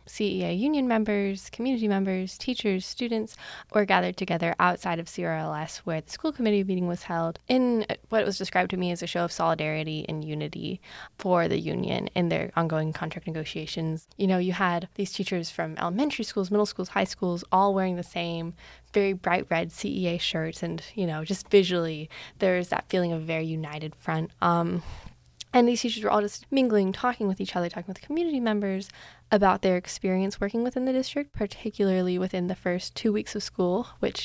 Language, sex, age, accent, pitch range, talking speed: English, female, 10-29, American, 175-225 Hz, 190 wpm